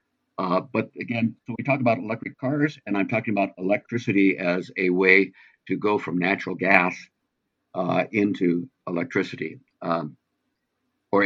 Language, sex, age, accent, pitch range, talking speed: English, male, 60-79, American, 90-110 Hz, 145 wpm